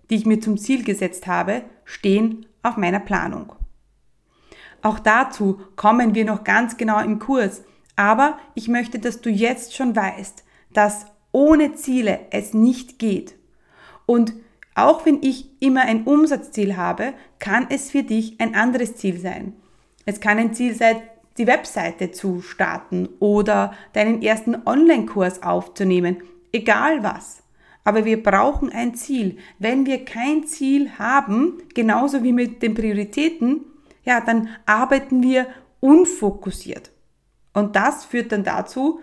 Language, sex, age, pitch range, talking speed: German, female, 30-49, 205-270 Hz, 140 wpm